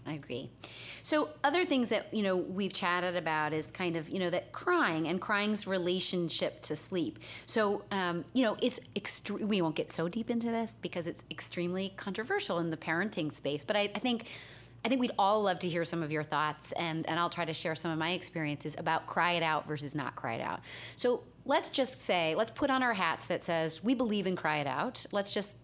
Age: 30-49